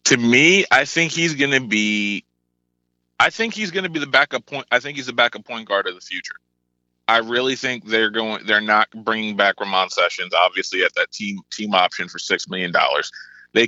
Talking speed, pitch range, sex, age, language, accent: 205 wpm, 105-140 Hz, male, 30-49, English, American